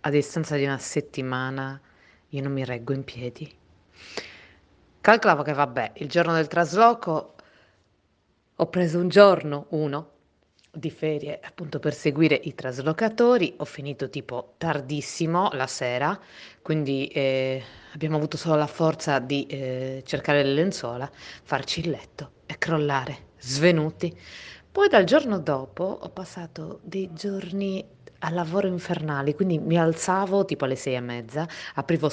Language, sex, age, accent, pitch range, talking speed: Italian, female, 30-49, native, 140-175 Hz, 140 wpm